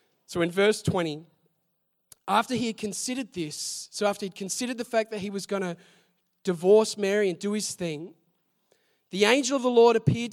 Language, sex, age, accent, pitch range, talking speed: English, male, 20-39, Australian, 195-290 Hz, 185 wpm